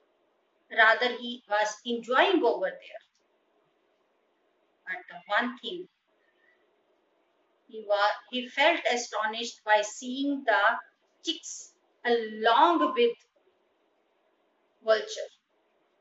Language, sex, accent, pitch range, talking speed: English, female, Indian, 240-345 Hz, 80 wpm